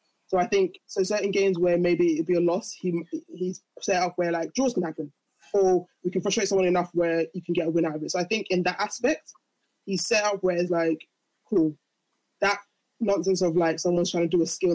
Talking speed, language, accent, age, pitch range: 240 wpm, English, British, 20-39, 165-185 Hz